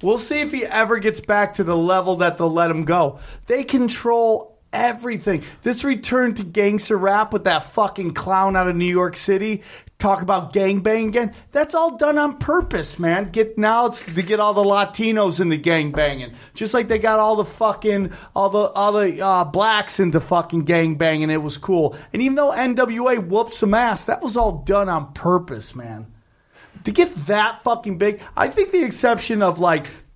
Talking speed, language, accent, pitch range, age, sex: 195 wpm, English, American, 165-220 Hz, 30-49, male